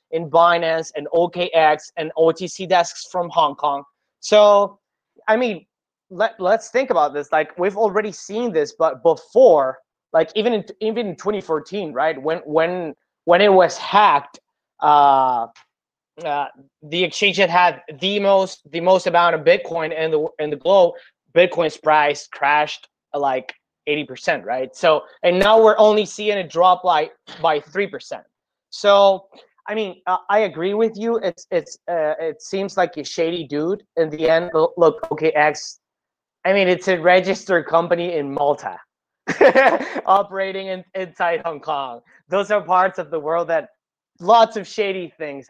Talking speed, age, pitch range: 160 wpm, 20-39, 160-200 Hz